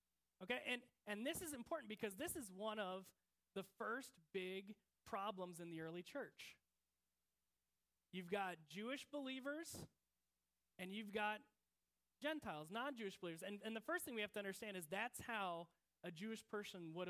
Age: 30-49